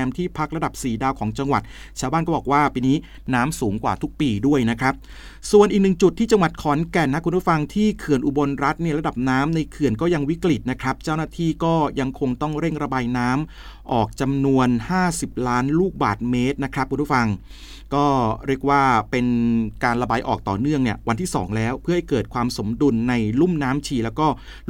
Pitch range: 125-155 Hz